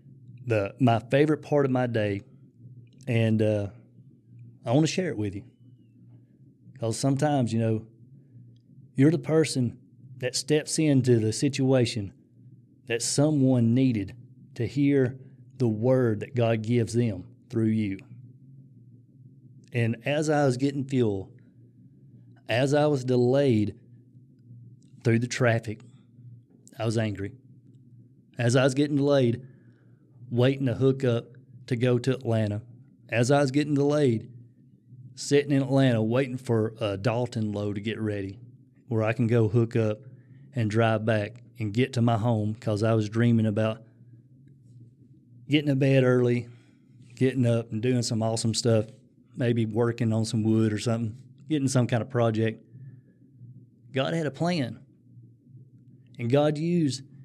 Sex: male